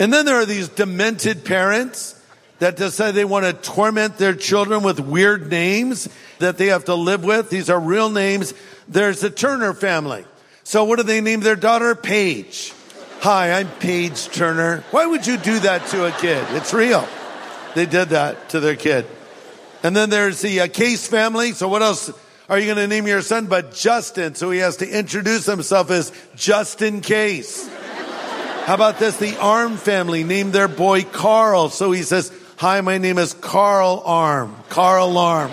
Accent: American